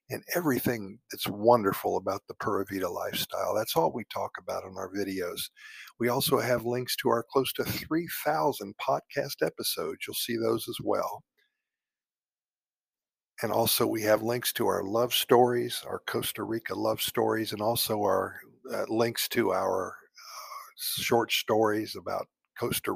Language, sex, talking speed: English, male, 155 wpm